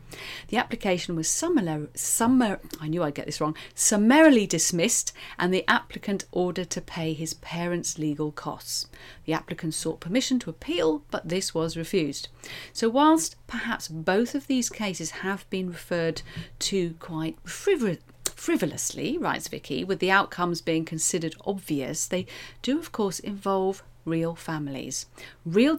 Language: English